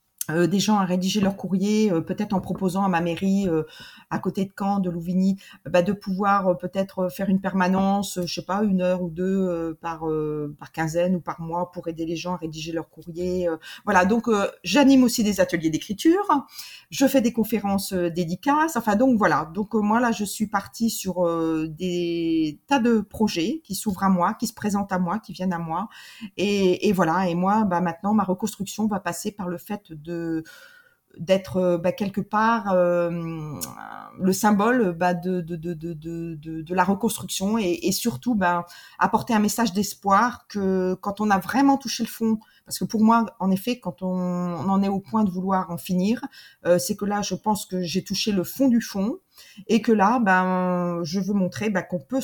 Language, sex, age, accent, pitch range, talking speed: French, female, 40-59, French, 175-210 Hz, 215 wpm